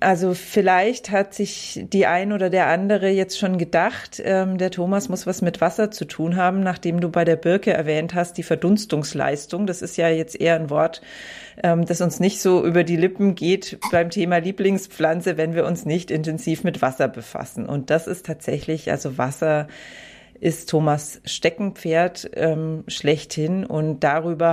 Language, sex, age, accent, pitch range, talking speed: German, female, 30-49, German, 150-180 Hz, 170 wpm